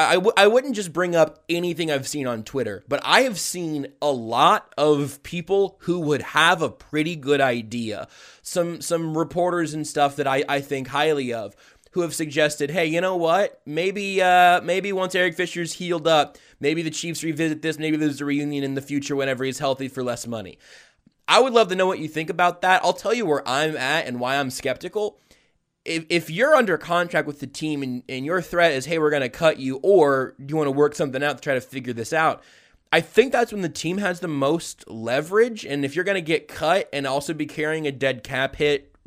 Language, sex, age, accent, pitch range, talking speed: English, male, 20-39, American, 130-170 Hz, 225 wpm